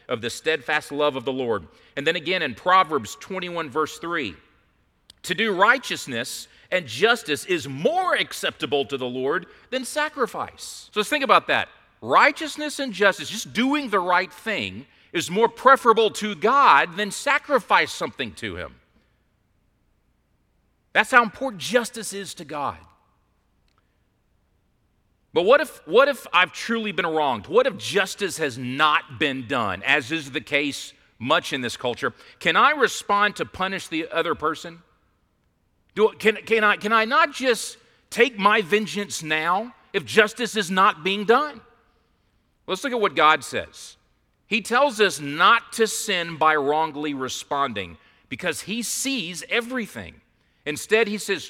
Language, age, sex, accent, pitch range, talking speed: English, 40-59, male, American, 155-230 Hz, 150 wpm